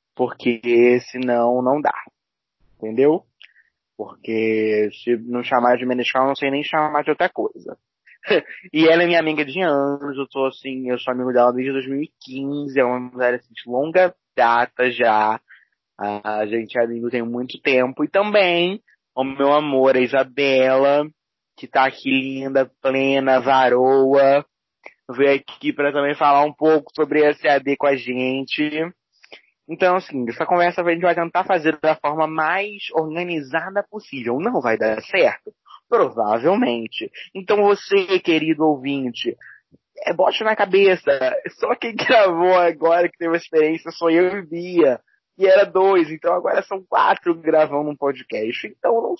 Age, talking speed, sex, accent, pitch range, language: 20-39, 150 wpm, male, Brazilian, 130-175 Hz, Portuguese